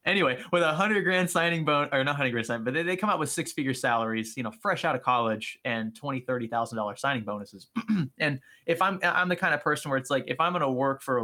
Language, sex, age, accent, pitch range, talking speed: English, male, 20-39, American, 110-135 Hz, 260 wpm